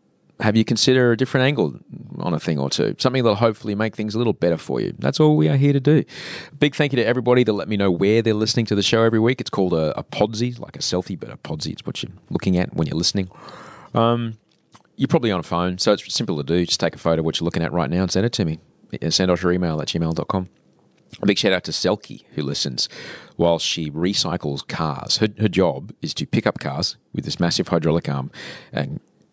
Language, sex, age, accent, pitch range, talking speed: English, male, 30-49, Australian, 80-110 Hz, 255 wpm